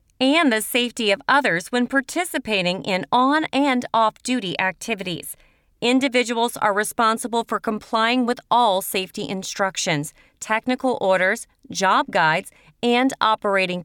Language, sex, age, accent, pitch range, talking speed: English, female, 40-59, American, 190-245 Hz, 115 wpm